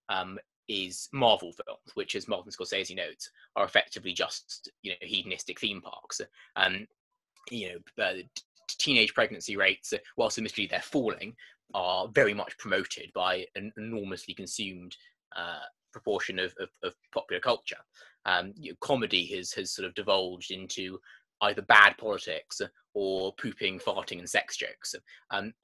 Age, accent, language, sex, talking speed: 20-39, British, English, male, 155 wpm